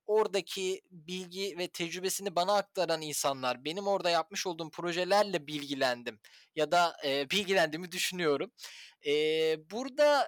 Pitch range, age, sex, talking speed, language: 170-245 Hz, 10-29, male, 115 wpm, Turkish